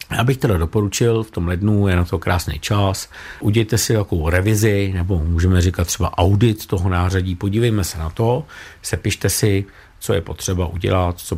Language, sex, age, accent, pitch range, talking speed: Czech, male, 50-69, native, 90-105 Hz, 175 wpm